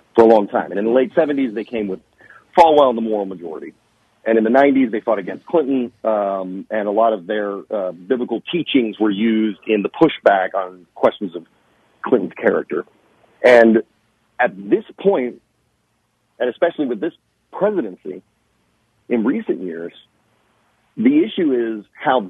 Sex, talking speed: male, 160 wpm